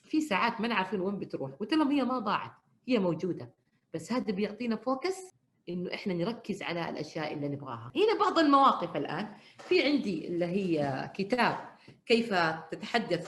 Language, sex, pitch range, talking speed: Arabic, female, 180-255 Hz, 155 wpm